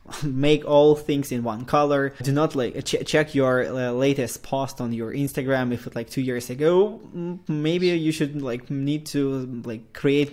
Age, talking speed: 20-39, 185 wpm